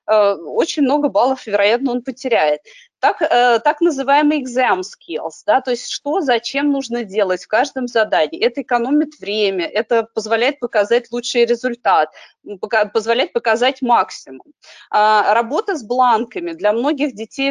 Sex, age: female, 20-39